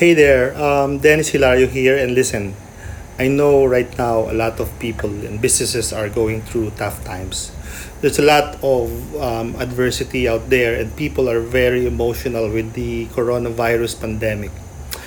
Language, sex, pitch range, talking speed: English, male, 105-135 Hz, 160 wpm